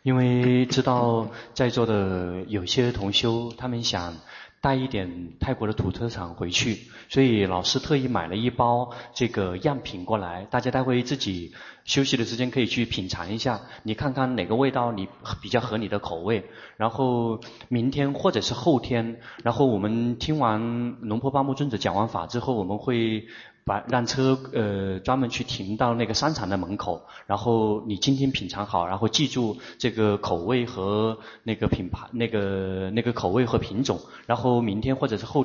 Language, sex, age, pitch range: Chinese, male, 30-49, 105-125 Hz